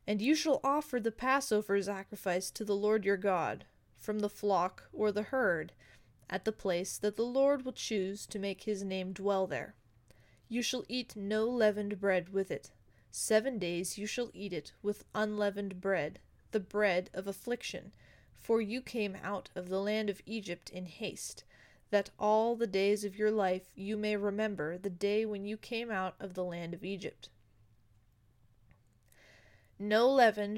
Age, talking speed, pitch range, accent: 20-39, 170 wpm, 185-220 Hz, American